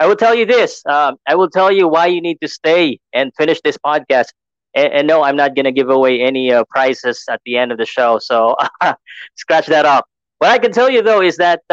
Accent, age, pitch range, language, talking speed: native, 20-39, 130-165 Hz, Filipino, 250 wpm